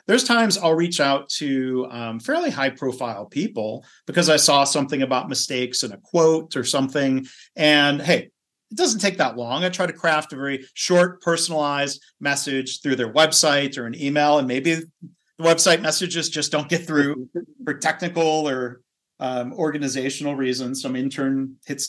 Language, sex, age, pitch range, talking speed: English, male, 40-59, 135-180 Hz, 170 wpm